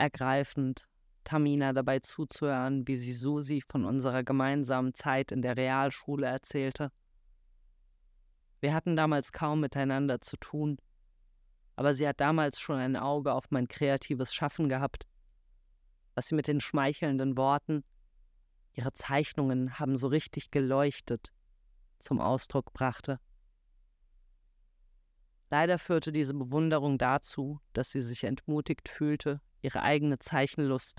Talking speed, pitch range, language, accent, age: 120 wpm, 100-145 Hz, German, German, 30-49